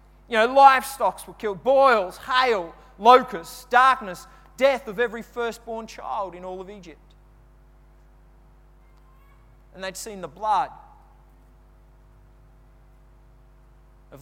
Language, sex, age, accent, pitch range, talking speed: English, male, 40-59, Australian, 155-220 Hz, 100 wpm